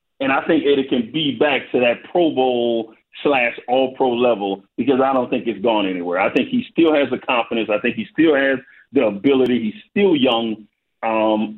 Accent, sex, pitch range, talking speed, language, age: American, male, 120-195 Hz, 205 wpm, English, 40-59